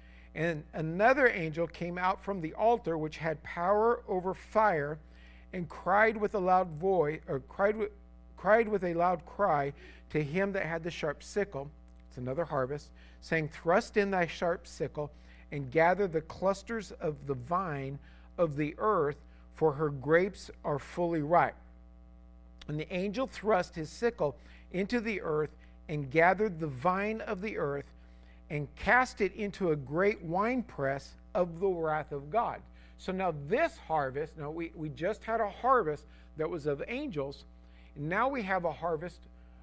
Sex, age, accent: male, 50-69, American